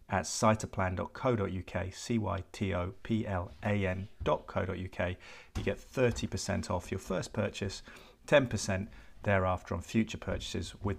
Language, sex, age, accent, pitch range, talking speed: English, male, 40-59, British, 95-110 Hz, 85 wpm